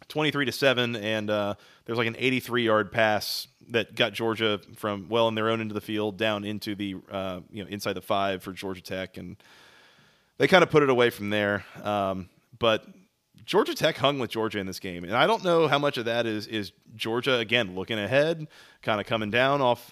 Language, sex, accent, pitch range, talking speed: English, male, American, 105-125 Hz, 215 wpm